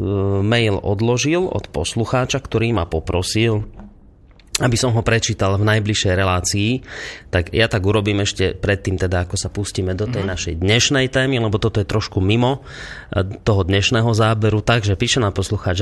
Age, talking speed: 30-49, 155 wpm